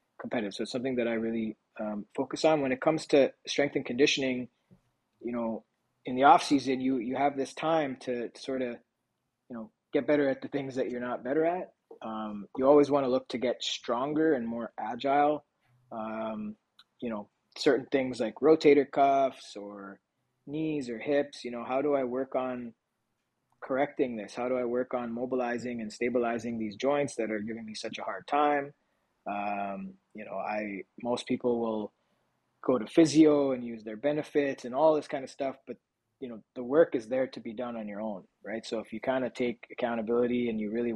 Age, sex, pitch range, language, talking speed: 20-39, male, 110-140 Hz, English, 200 wpm